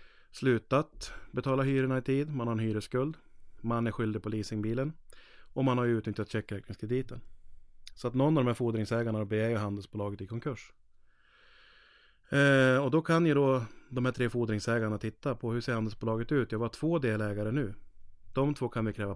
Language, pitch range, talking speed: Swedish, 105-125 Hz, 180 wpm